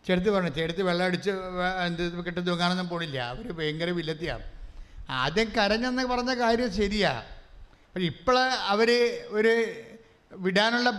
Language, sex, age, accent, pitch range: English, male, 60-79, Indian, 145-210 Hz